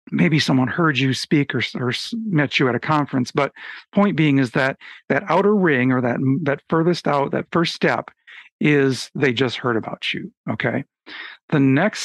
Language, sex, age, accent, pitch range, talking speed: English, male, 50-69, American, 125-150 Hz, 185 wpm